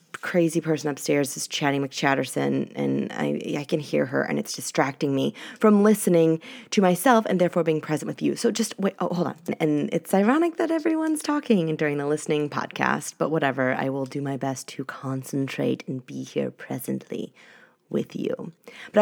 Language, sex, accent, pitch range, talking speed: English, female, American, 140-185 Hz, 185 wpm